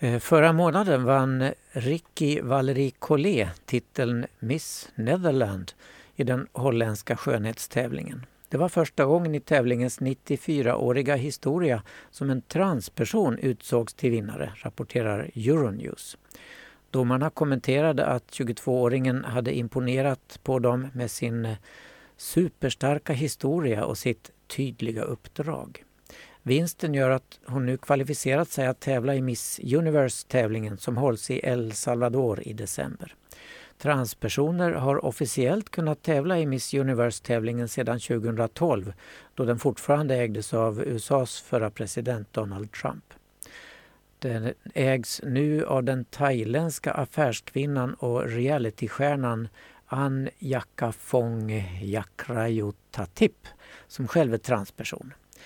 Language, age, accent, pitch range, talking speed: Swedish, 60-79, native, 120-145 Hz, 105 wpm